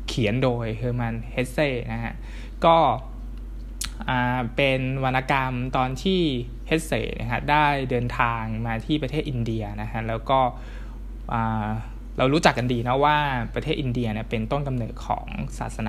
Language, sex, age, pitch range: Thai, male, 20-39, 115-135 Hz